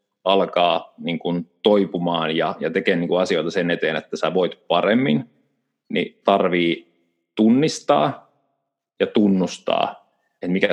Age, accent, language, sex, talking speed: 30-49, native, Finnish, male, 130 wpm